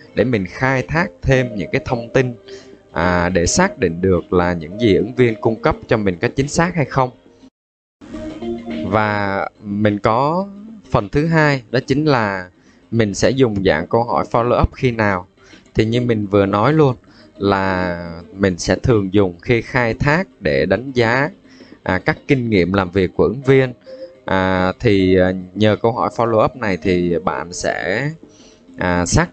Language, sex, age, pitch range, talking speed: Vietnamese, male, 20-39, 95-130 Hz, 175 wpm